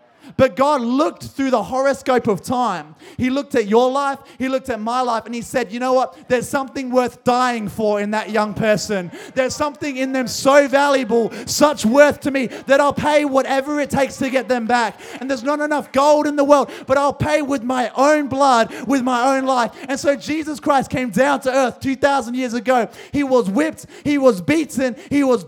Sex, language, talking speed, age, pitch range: male, English, 215 wpm, 20-39, 220-275 Hz